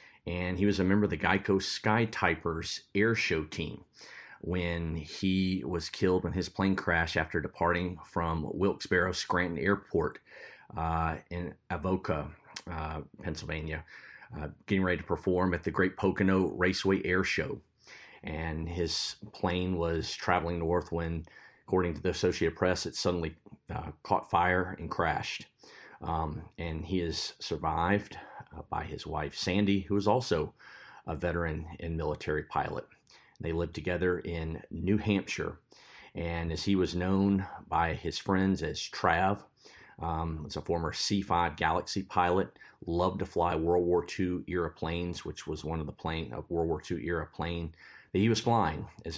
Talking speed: 155 wpm